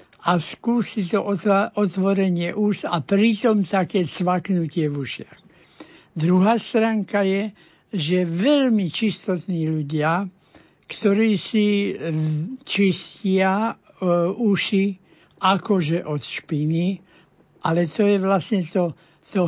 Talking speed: 100 wpm